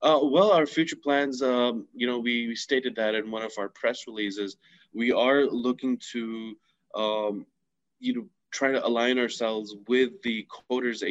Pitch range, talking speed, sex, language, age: 105-125 Hz, 175 wpm, male, Arabic, 20-39